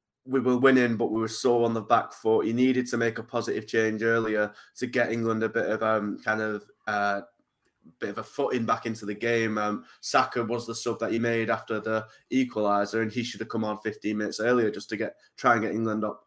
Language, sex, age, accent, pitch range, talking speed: English, male, 20-39, British, 110-125 Hz, 240 wpm